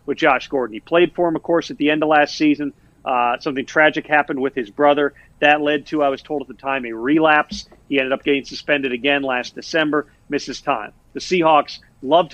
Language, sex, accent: English, male, American